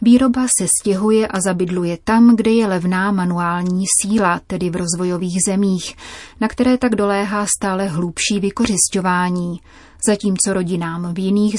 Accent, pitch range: native, 180-220 Hz